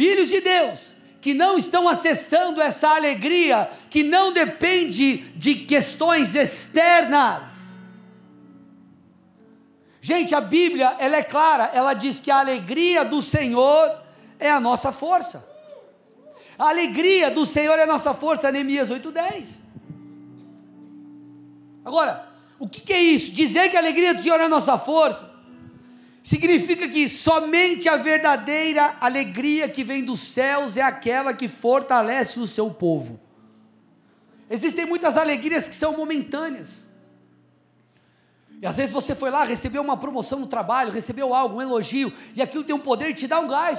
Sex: male